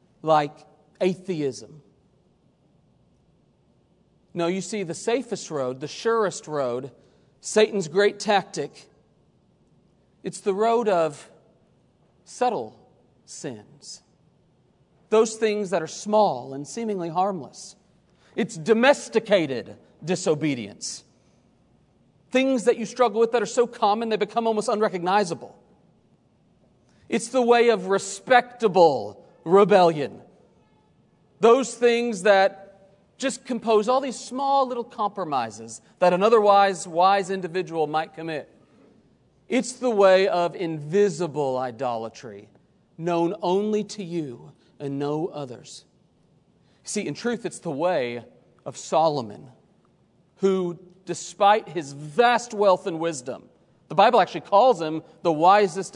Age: 40-59